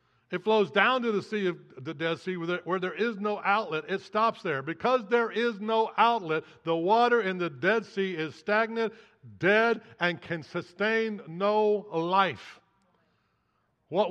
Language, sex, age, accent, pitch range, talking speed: English, male, 60-79, American, 195-250 Hz, 165 wpm